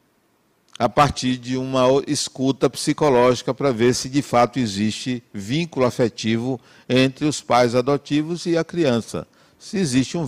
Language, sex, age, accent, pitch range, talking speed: Portuguese, male, 60-79, Brazilian, 115-150 Hz, 140 wpm